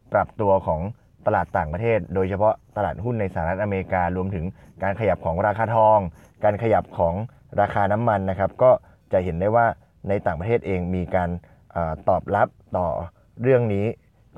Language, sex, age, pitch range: Thai, male, 20-39, 85-110 Hz